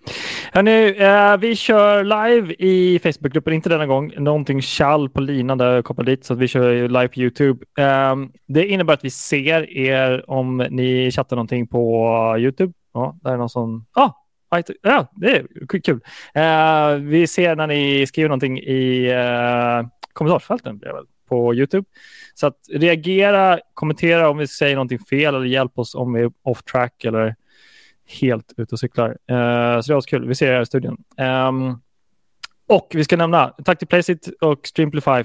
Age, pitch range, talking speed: 20-39, 120-155 Hz, 175 wpm